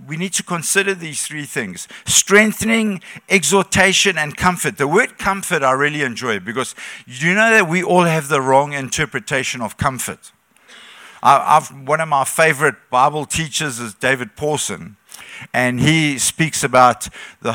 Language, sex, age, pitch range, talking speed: English, male, 60-79, 145-200 Hz, 150 wpm